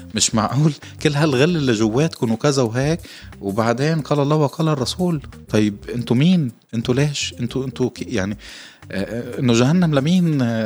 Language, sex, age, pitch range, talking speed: Arabic, male, 20-39, 95-135 Hz, 135 wpm